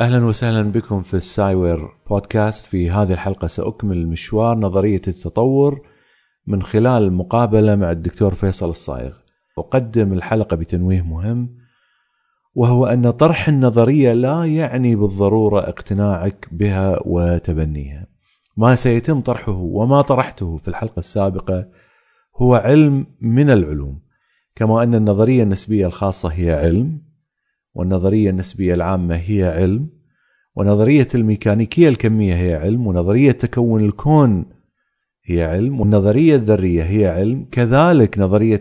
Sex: male